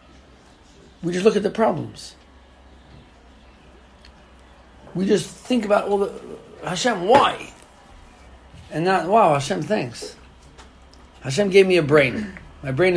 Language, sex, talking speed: English, male, 125 wpm